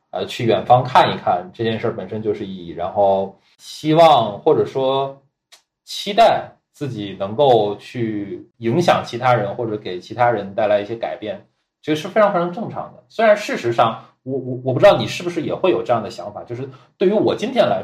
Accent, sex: native, male